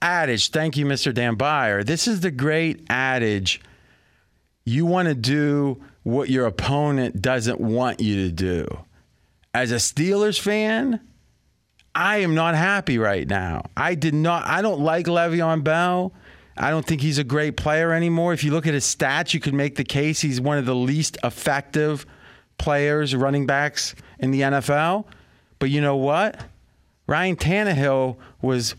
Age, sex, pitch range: 30-49, male, 125-160 Hz